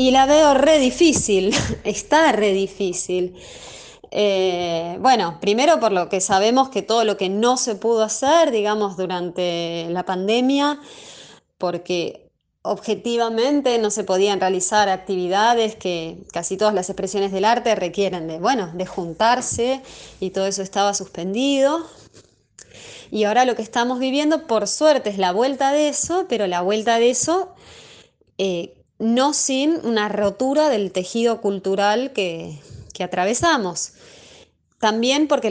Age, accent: 20-39, Argentinian